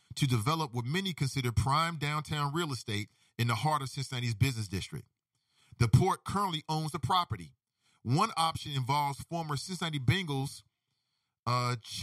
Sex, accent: male, American